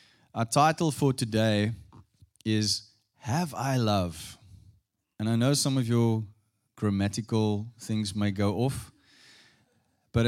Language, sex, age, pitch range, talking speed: English, male, 20-39, 105-130 Hz, 115 wpm